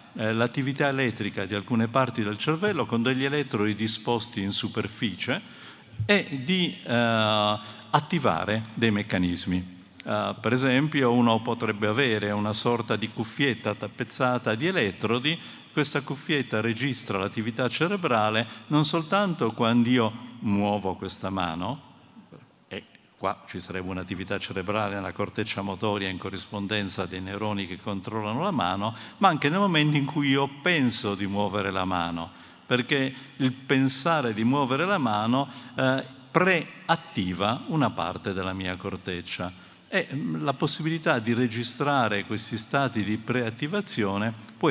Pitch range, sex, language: 100-135 Hz, male, Italian